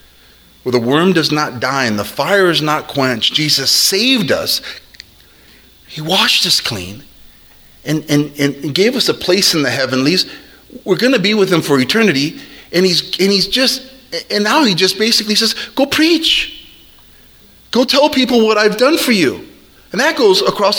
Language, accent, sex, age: English, American, male, 40-59